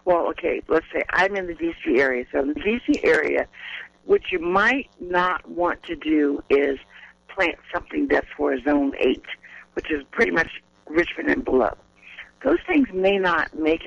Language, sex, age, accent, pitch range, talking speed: English, female, 60-79, American, 150-195 Hz, 175 wpm